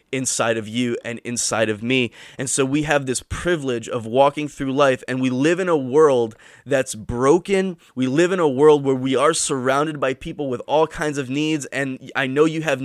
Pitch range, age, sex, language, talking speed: 125-160 Hz, 20-39, male, English, 215 wpm